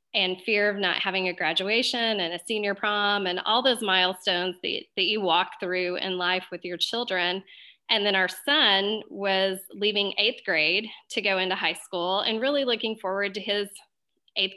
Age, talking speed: 20-39, 185 wpm